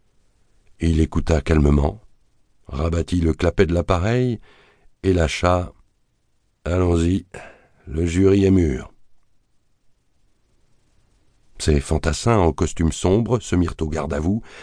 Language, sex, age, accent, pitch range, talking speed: French, male, 60-79, French, 80-105 Hz, 100 wpm